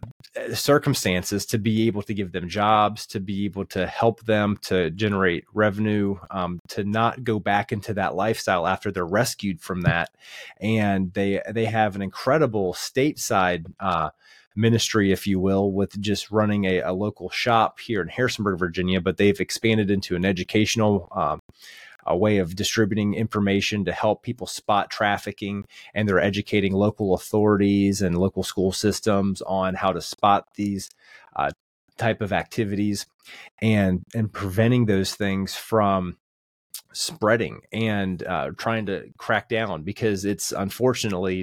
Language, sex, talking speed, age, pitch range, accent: English, male, 150 wpm, 30-49, 95-110 Hz, American